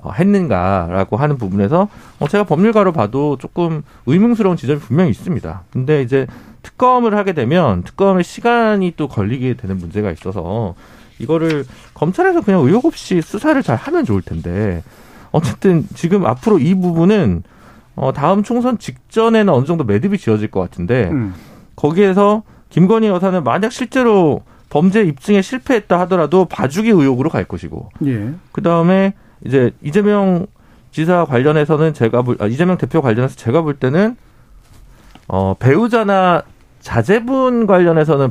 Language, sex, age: Korean, male, 40-59